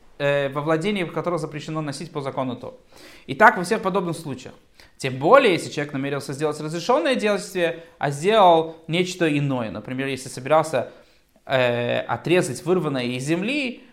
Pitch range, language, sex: 145-185 Hz, Russian, male